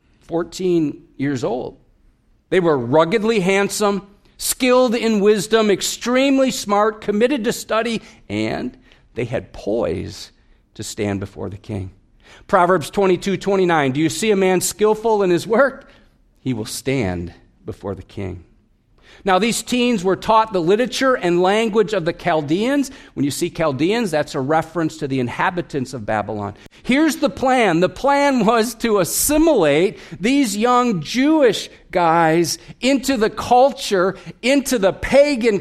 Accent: American